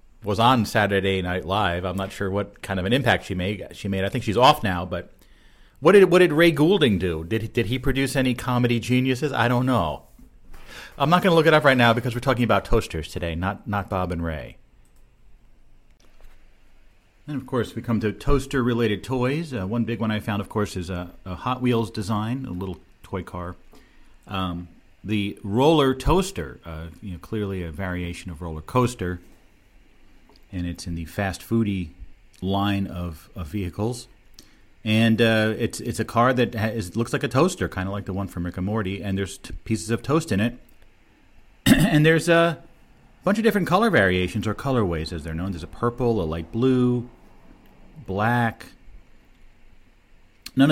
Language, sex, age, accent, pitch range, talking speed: English, male, 40-59, American, 90-120 Hz, 190 wpm